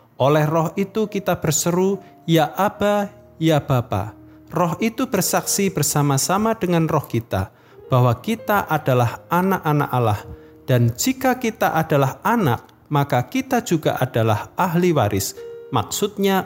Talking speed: 120 wpm